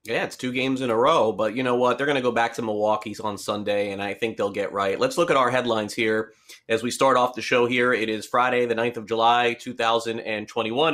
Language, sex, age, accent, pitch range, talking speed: English, male, 30-49, American, 110-135 Hz, 260 wpm